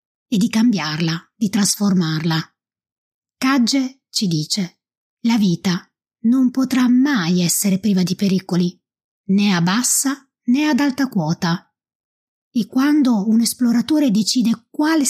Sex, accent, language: female, native, Italian